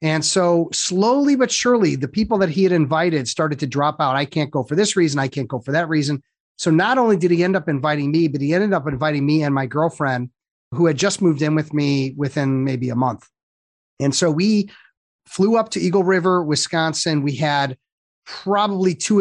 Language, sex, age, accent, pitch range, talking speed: English, male, 30-49, American, 140-180 Hz, 215 wpm